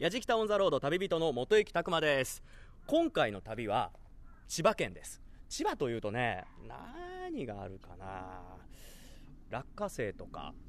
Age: 30-49